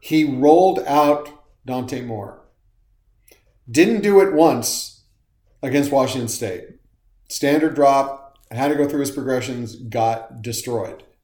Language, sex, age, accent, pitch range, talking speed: English, male, 40-59, American, 115-150 Hz, 115 wpm